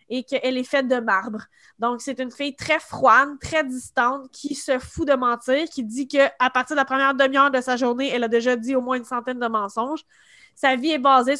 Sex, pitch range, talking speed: female, 245-295 Hz, 230 wpm